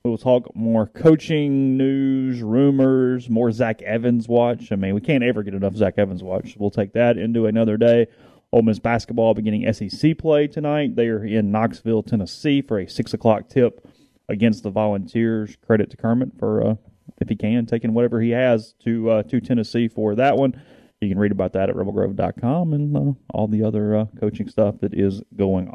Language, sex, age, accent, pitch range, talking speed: English, male, 30-49, American, 105-130 Hz, 195 wpm